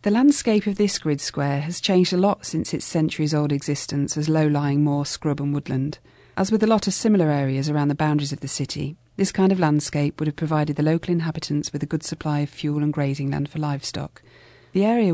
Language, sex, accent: English, female, British